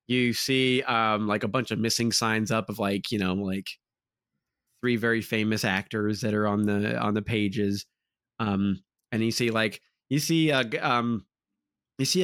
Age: 20-39